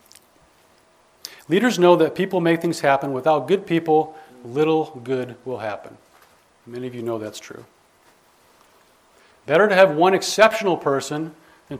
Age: 40-59